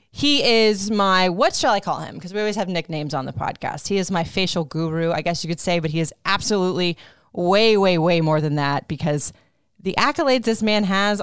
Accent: American